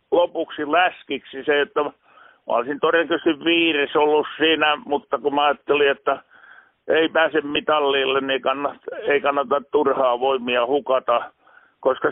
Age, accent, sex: 50-69, native, male